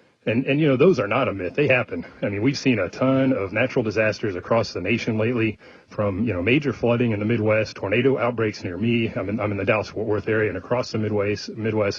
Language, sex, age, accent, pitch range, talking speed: English, male, 30-49, American, 105-125 Hz, 240 wpm